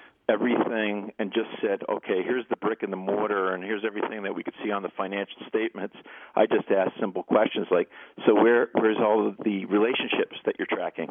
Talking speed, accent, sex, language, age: 205 wpm, American, male, English, 50-69